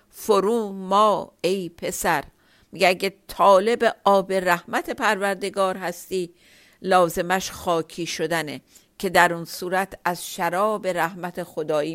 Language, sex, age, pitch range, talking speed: Persian, female, 50-69, 175-205 Hz, 110 wpm